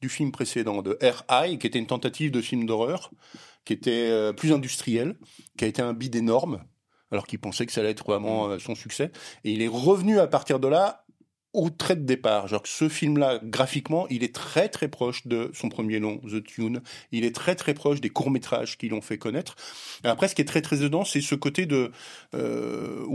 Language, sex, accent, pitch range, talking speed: French, male, French, 120-165 Hz, 215 wpm